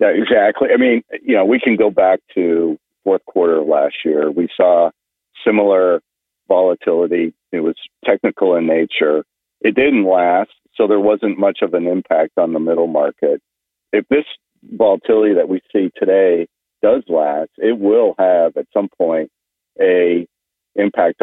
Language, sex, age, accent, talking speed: English, male, 50-69, American, 160 wpm